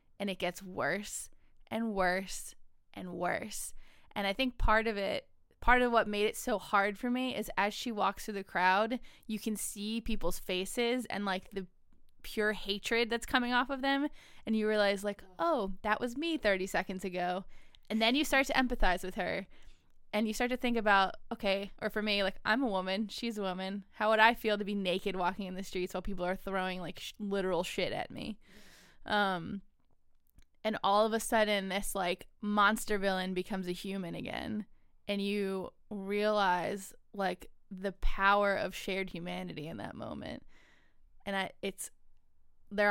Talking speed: 185 wpm